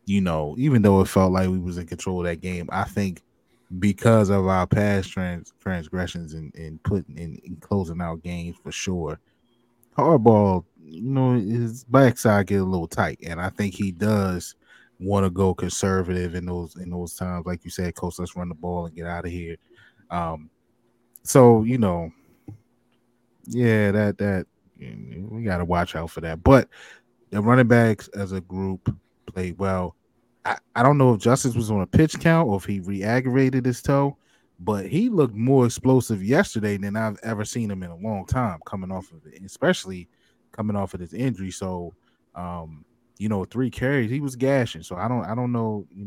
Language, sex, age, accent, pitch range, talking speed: English, male, 20-39, American, 90-115 Hz, 195 wpm